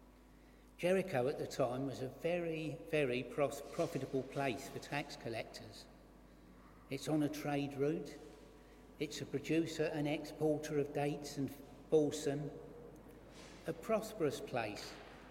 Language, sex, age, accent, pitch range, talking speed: English, male, 60-79, British, 135-175 Hz, 120 wpm